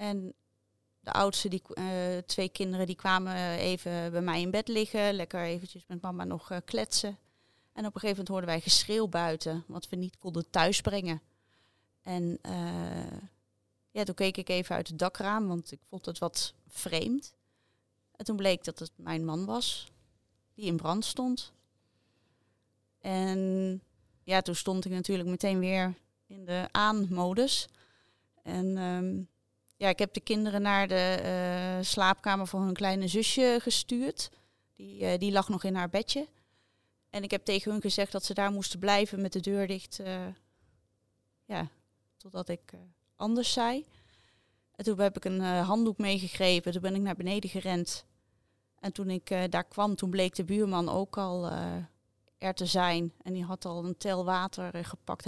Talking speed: 170 wpm